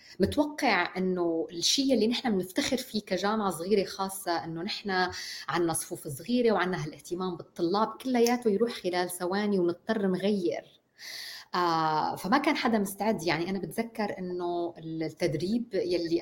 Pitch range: 165-220 Hz